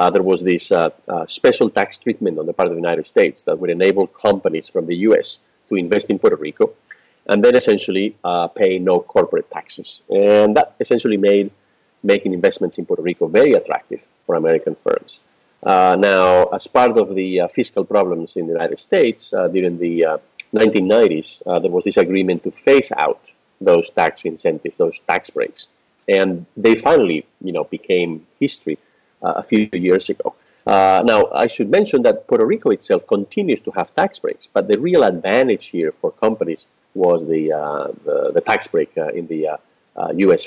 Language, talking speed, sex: English, 190 wpm, male